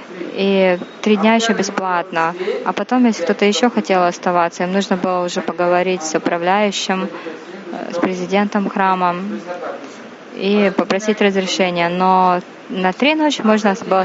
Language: Russian